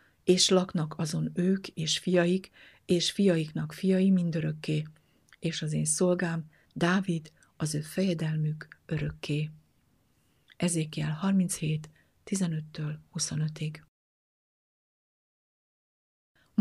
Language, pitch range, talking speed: Hungarian, 155-180 Hz, 85 wpm